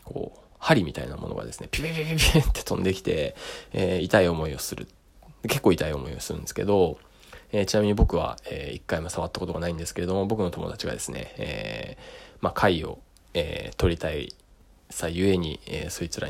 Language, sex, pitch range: Japanese, male, 85-105 Hz